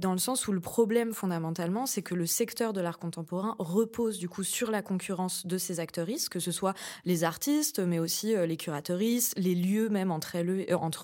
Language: French